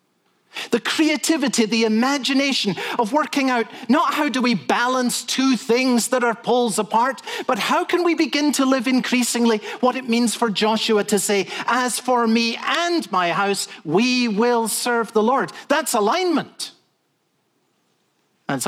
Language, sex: English, male